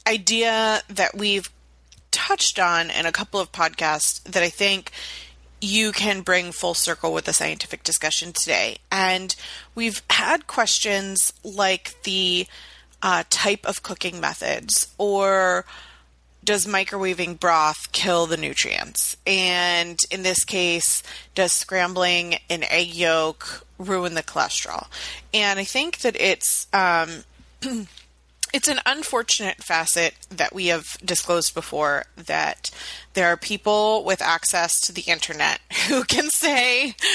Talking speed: 130 wpm